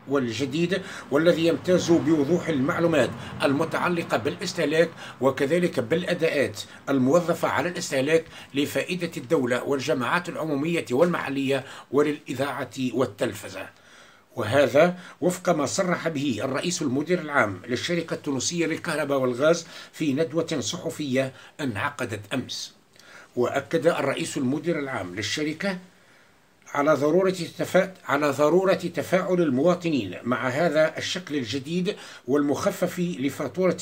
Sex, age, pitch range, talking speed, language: male, 60-79, 140-175 Hz, 95 wpm, Arabic